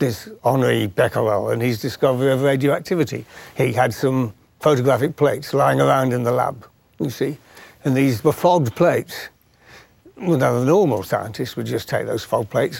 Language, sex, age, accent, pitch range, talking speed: English, male, 60-79, British, 120-145 Hz, 165 wpm